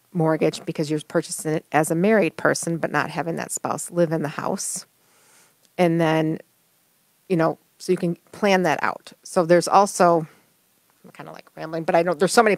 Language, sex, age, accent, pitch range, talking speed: English, female, 40-59, American, 160-180 Hz, 200 wpm